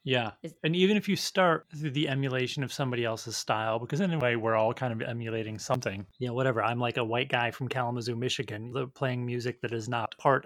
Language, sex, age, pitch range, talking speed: English, male, 30-49, 115-130 Hz, 225 wpm